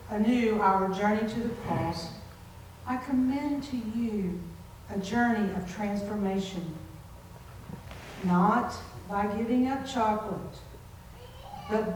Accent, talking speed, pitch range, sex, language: American, 100 wpm, 210-265 Hz, female, English